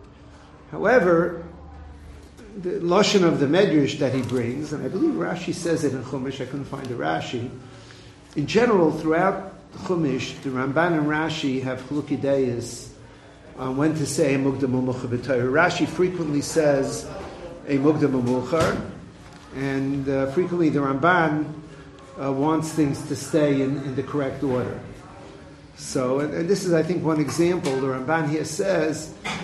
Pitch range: 130-165 Hz